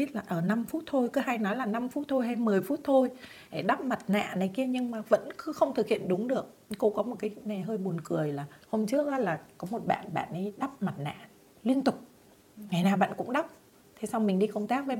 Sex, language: female, Vietnamese